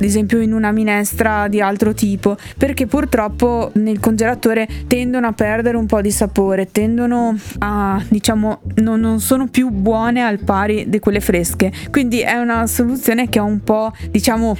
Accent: native